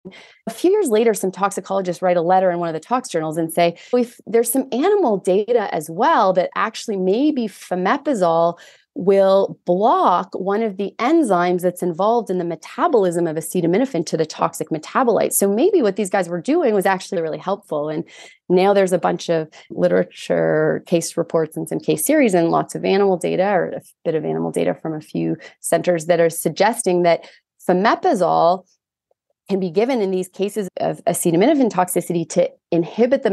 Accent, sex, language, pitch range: American, female, English, 170-210 Hz